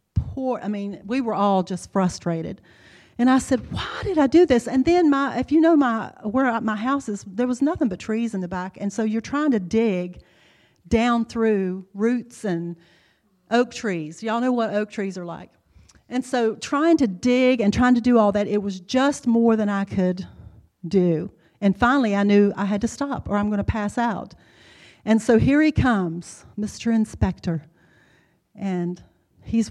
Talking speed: 190 wpm